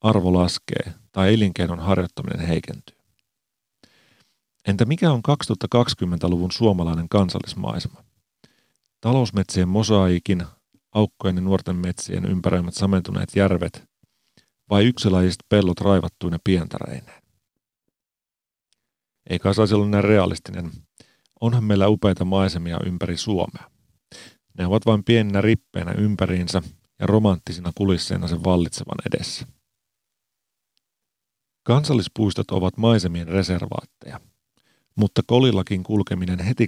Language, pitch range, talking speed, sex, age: Finnish, 90-105 Hz, 90 wpm, male, 40-59